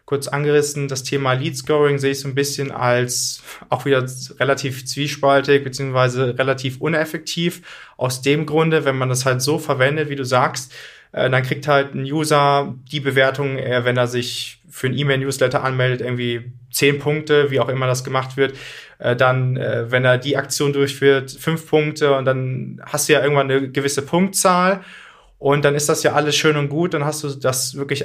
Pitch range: 135-155 Hz